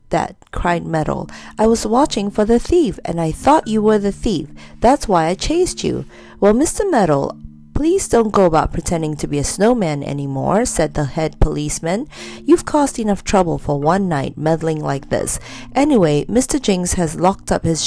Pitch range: 155-235 Hz